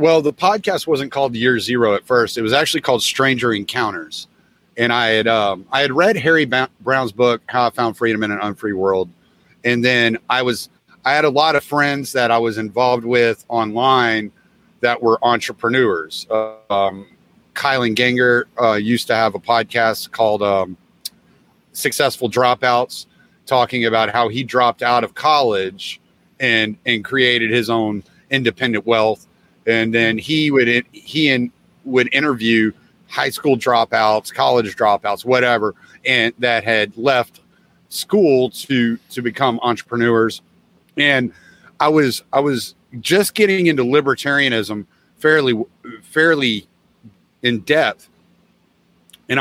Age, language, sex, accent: 30-49, English, male, American